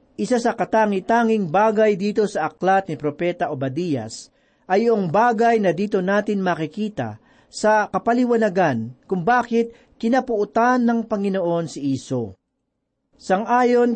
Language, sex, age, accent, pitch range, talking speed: Filipino, male, 40-59, native, 165-230 Hz, 115 wpm